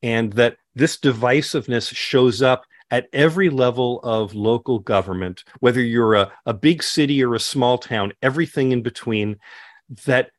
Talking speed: 150 wpm